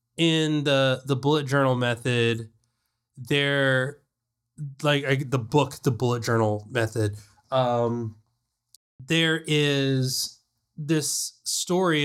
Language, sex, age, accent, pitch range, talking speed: English, male, 20-39, American, 120-150 Hz, 100 wpm